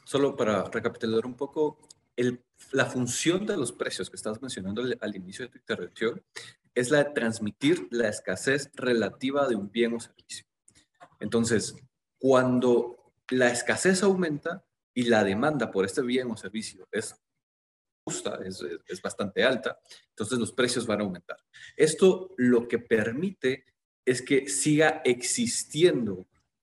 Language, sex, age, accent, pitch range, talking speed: Spanish, male, 30-49, Mexican, 110-150 Hz, 145 wpm